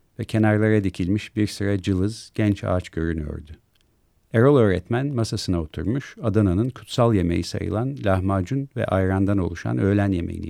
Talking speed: 130 wpm